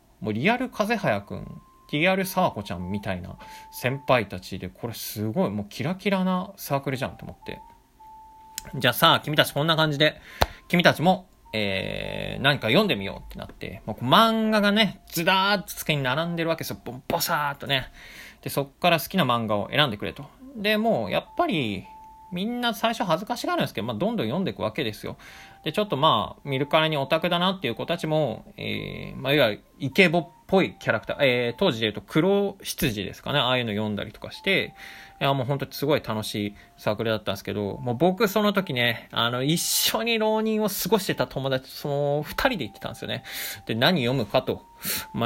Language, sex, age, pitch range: Japanese, male, 20-39, 120-195 Hz